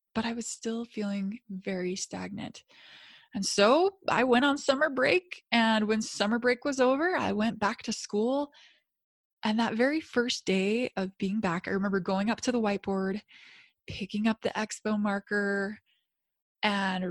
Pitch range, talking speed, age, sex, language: 195-250 Hz, 160 wpm, 20-39, female, English